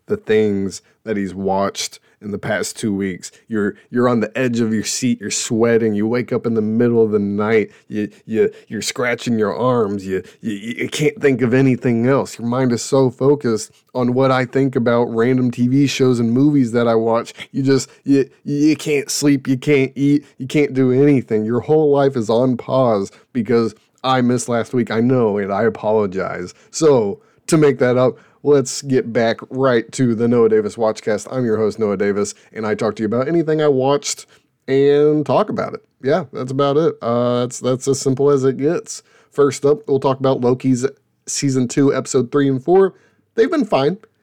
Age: 20-39